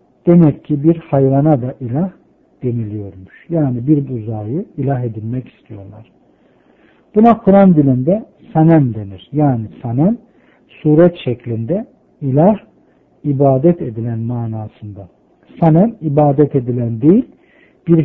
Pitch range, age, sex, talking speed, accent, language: 125-175 Hz, 60-79, male, 105 wpm, native, Turkish